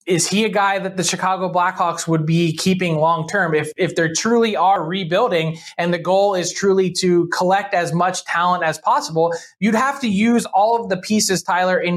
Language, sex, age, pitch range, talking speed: English, male, 20-39, 165-205 Hz, 200 wpm